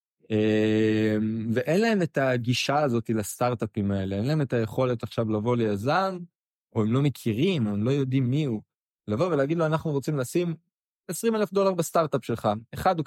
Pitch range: 110-170 Hz